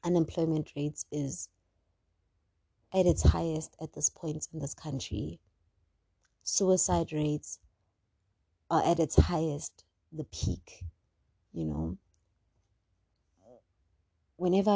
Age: 20-39